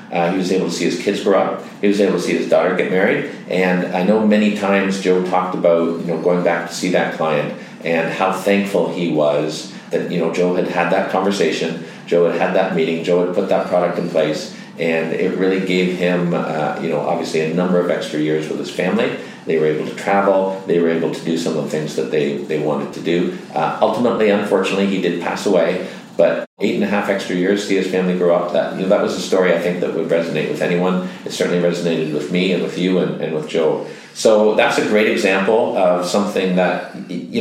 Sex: male